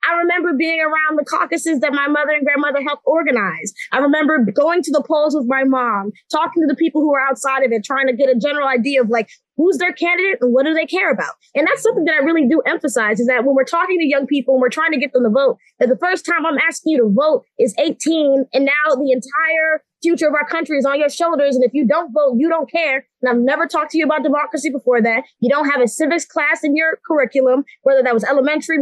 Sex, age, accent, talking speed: female, 20-39, American, 260 wpm